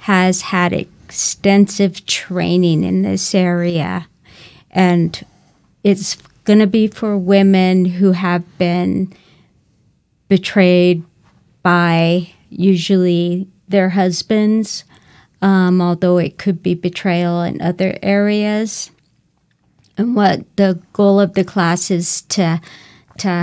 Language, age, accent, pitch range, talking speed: English, 40-59, American, 175-195 Hz, 100 wpm